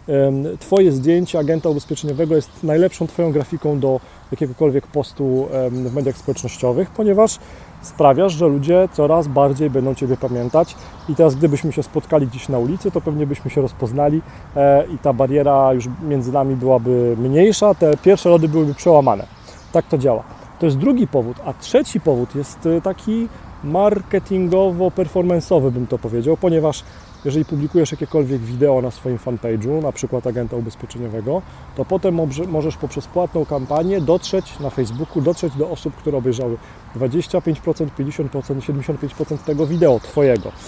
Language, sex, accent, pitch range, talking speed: Polish, male, native, 135-170 Hz, 145 wpm